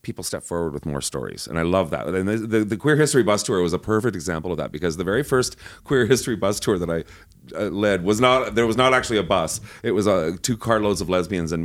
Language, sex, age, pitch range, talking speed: English, male, 30-49, 95-130 Hz, 270 wpm